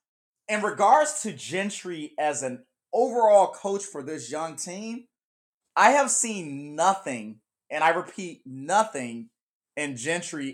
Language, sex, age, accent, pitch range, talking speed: English, male, 30-49, American, 145-210 Hz, 125 wpm